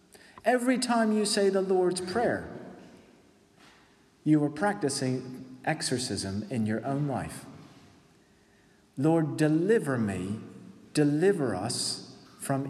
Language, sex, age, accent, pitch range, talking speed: English, male, 40-59, American, 115-145 Hz, 100 wpm